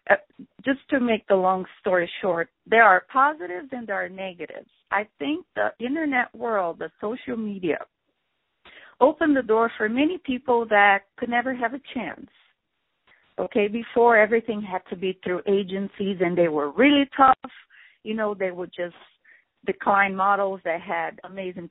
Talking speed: 160 wpm